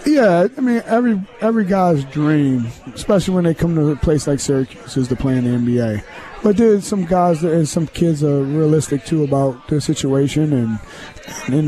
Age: 30-49